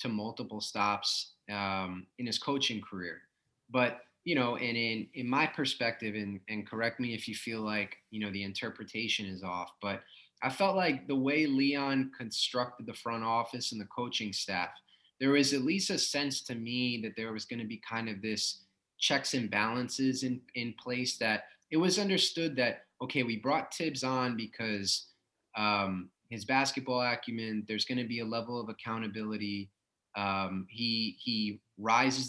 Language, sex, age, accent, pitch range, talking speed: English, male, 20-39, American, 105-130 Hz, 175 wpm